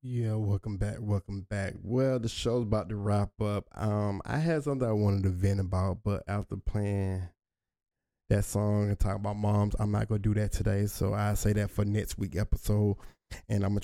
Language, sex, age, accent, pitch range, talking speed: English, male, 10-29, American, 100-110 Hz, 205 wpm